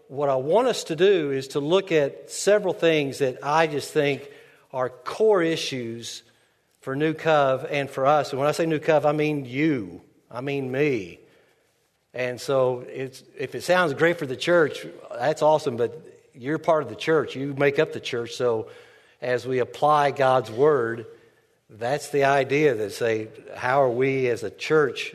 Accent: American